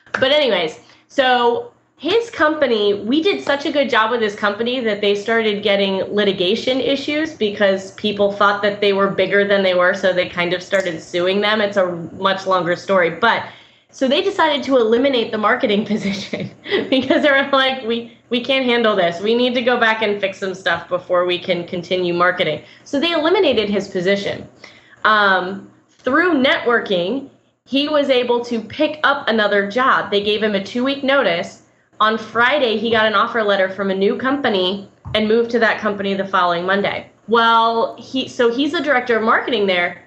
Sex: female